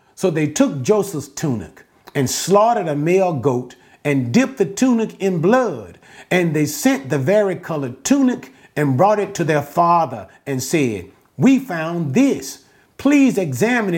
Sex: male